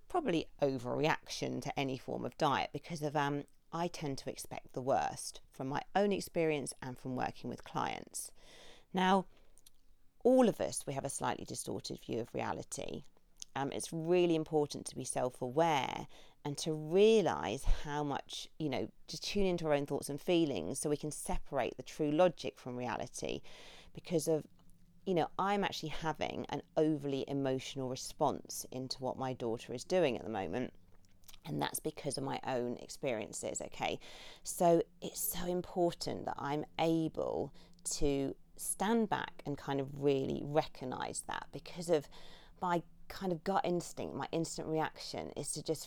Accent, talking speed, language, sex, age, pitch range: British, 165 wpm, English, female, 40-59, 130-170 Hz